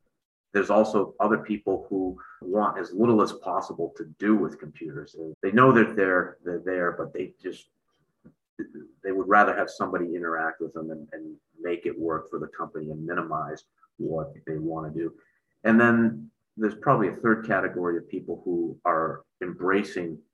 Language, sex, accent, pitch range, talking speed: English, male, American, 80-110 Hz, 170 wpm